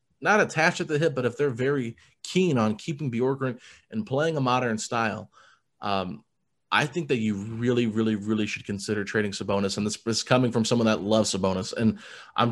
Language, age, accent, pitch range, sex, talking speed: English, 30-49, American, 115-140 Hz, male, 195 wpm